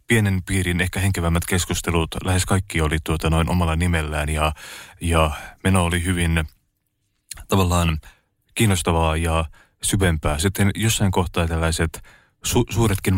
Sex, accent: male, native